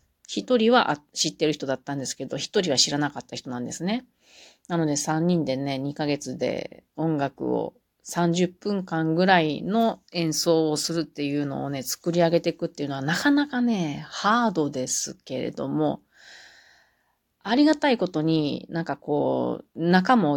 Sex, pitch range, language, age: female, 145-175 Hz, Japanese, 40-59